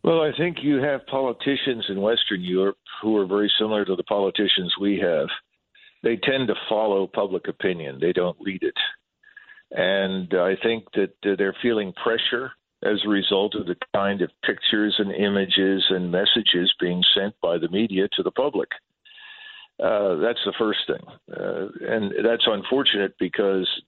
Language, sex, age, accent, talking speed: English, male, 50-69, American, 165 wpm